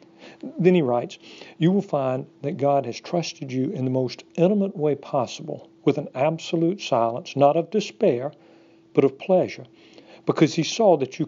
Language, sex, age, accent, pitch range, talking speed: English, male, 60-79, American, 130-170 Hz, 170 wpm